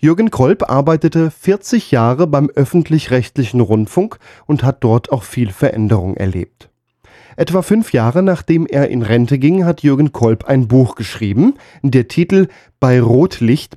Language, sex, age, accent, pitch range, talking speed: German, male, 10-29, German, 115-155 Hz, 145 wpm